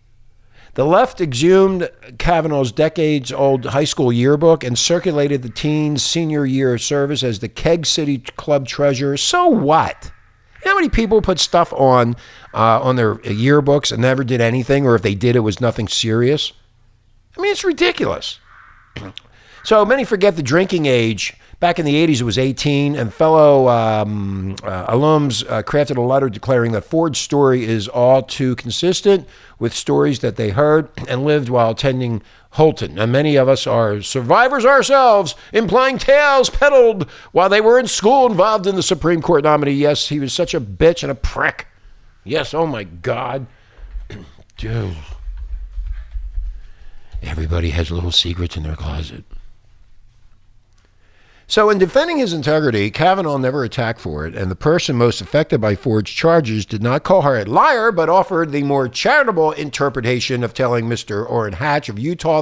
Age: 50-69